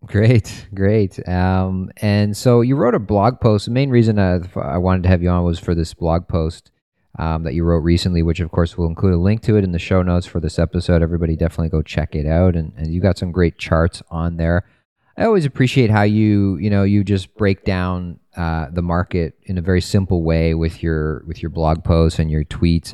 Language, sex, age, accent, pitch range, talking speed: English, male, 30-49, American, 80-95 Hz, 235 wpm